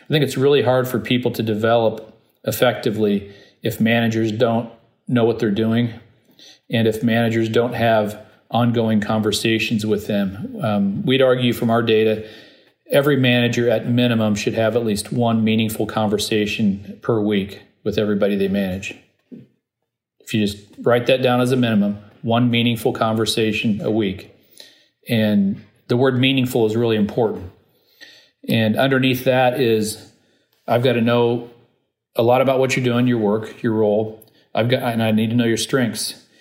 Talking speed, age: 160 wpm, 40-59